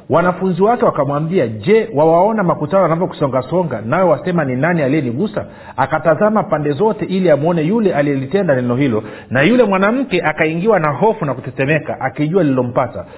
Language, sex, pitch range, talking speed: Swahili, male, 140-195 Hz, 145 wpm